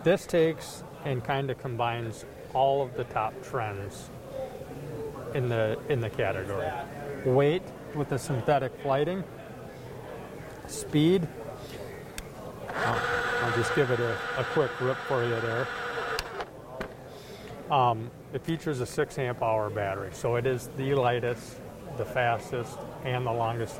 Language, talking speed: English, 130 wpm